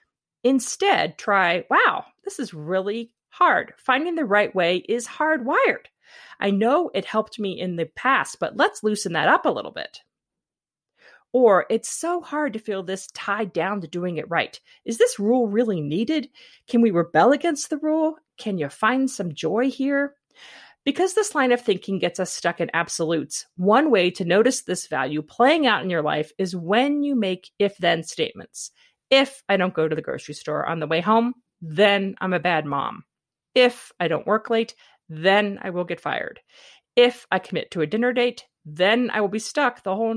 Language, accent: English, American